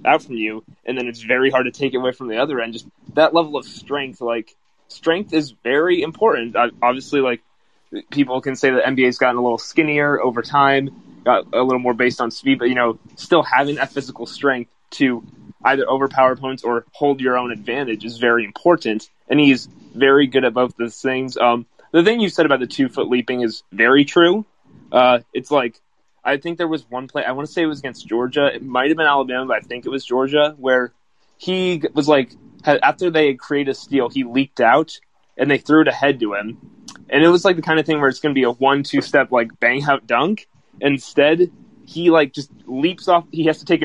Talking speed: 225 wpm